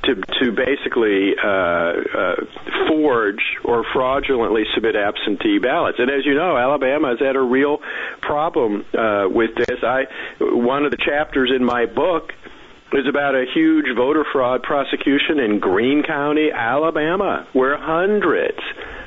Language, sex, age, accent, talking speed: English, male, 50-69, American, 140 wpm